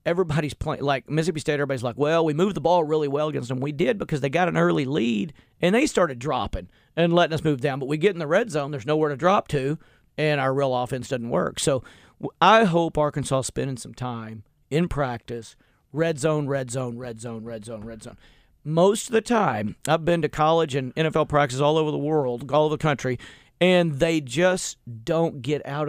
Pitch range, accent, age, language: 130-165 Hz, American, 40-59, English